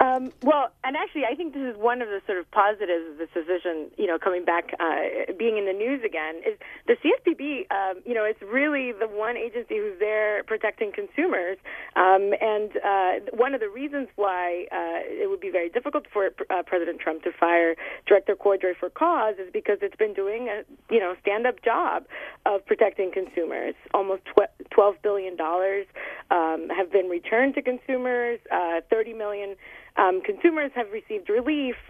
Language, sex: English, female